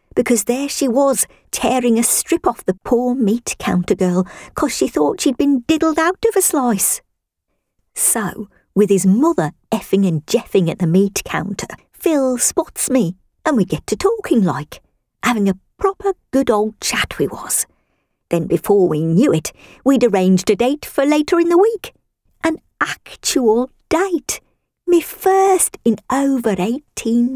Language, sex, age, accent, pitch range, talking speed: English, female, 50-69, British, 180-295 Hz, 155 wpm